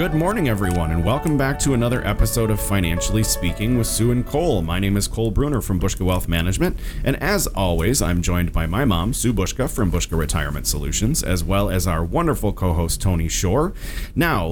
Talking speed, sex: 200 wpm, male